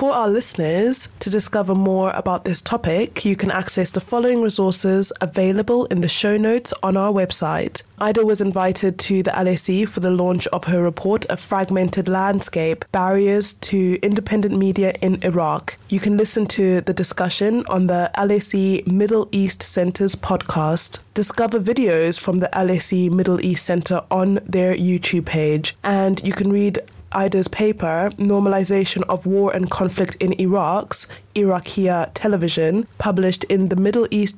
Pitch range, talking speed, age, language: 180-205 Hz, 155 wpm, 20-39, English